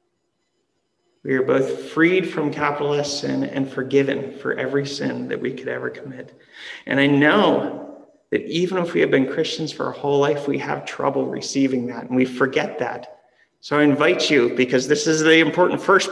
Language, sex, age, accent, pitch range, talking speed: English, male, 40-59, American, 135-160 Hz, 180 wpm